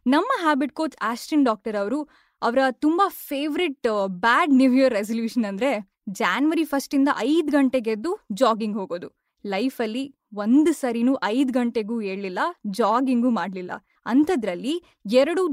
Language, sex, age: Kannada, female, 10-29